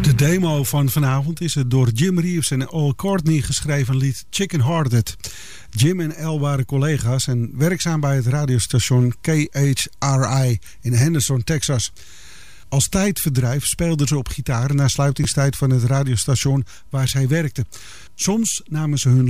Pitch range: 125-160 Hz